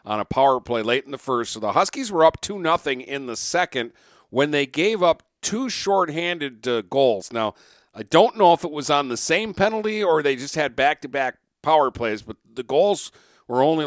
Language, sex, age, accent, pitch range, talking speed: English, male, 50-69, American, 120-155 Hz, 210 wpm